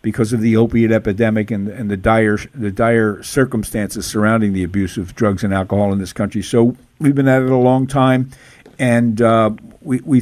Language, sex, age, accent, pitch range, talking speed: English, male, 50-69, American, 110-125 Hz, 200 wpm